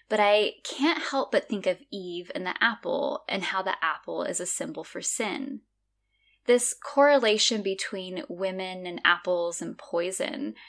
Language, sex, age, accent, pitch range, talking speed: English, female, 10-29, American, 175-215 Hz, 155 wpm